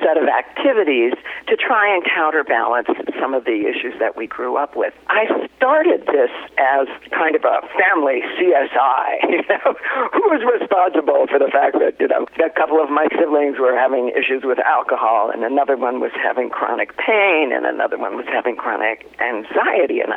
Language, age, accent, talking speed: English, 50-69, American, 180 wpm